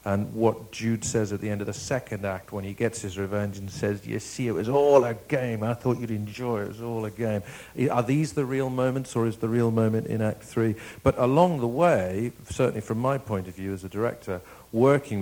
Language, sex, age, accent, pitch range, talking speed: English, male, 50-69, British, 100-120 Hz, 245 wpm